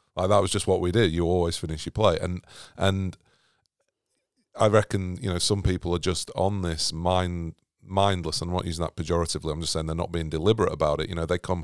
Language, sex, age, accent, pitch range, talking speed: English, male, 40-59, British, 85-100 Hz, 225 wpm